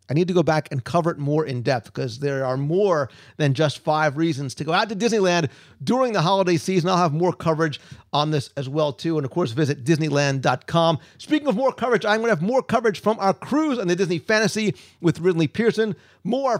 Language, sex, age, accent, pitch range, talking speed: English, male, 40-59, American, 160-220 Hz, 230 wpm